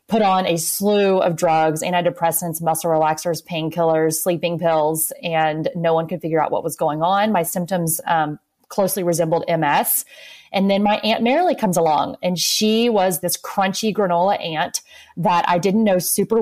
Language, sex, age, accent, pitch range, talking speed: English, female, 30-49, American, 160-185 Hz, 170 wpm